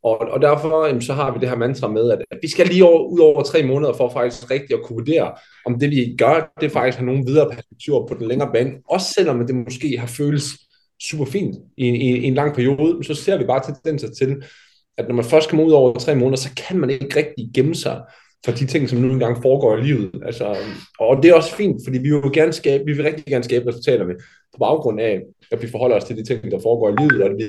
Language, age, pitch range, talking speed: Danish, 20-39, 120-150 Hz, 260 wpm